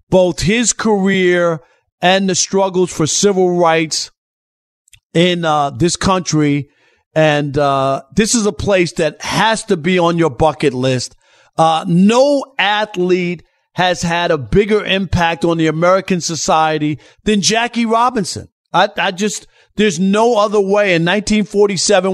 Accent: American